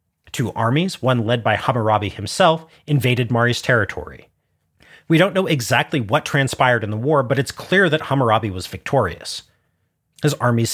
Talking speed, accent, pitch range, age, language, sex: 155 wpm, American, 115-155 Hz, 30-49, English, male